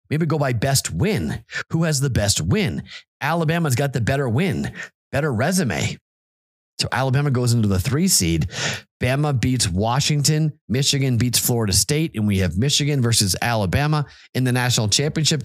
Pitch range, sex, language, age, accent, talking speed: 100-140 Hz, male, English, 30-49, American, 160 wpm